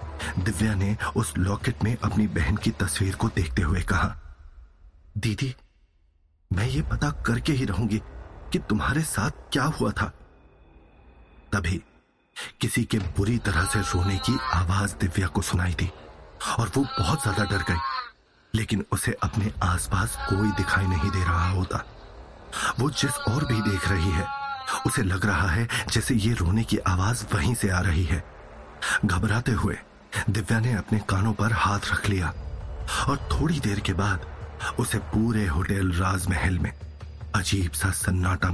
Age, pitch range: 40-59, 90-110 Hz